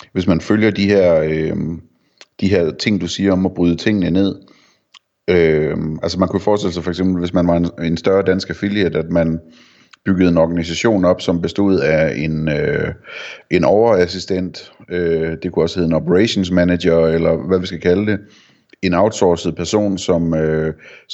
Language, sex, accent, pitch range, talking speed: Danish, male, native, 85-100 Hz, 180 wpm